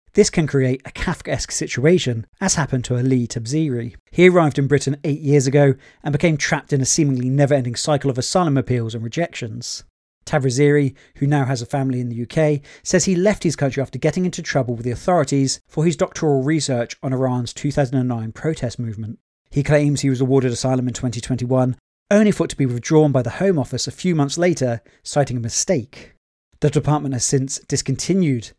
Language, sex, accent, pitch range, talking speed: English, male, British, 125-155 Hz, 190 wpm